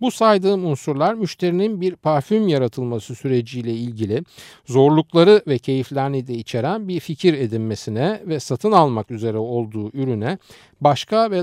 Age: 50-69